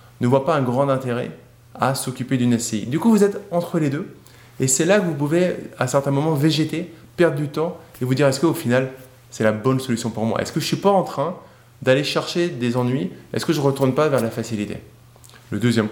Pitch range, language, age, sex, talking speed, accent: 115-155 Hz, French, 20-39, male, 250 wpm, French